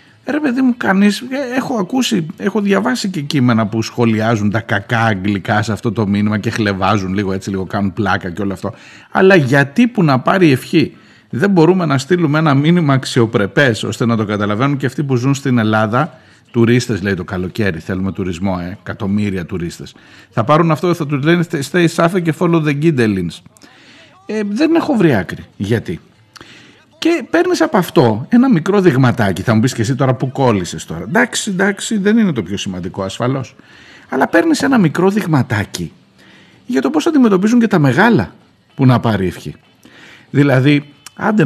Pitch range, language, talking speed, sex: 105-175 Hz, Greek, 170 wpm, male